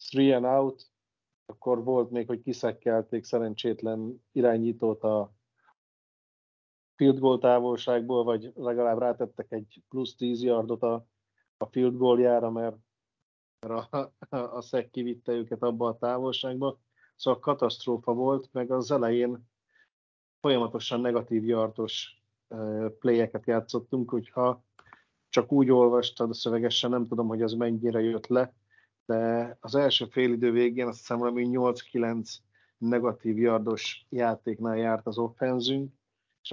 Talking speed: 120 wpm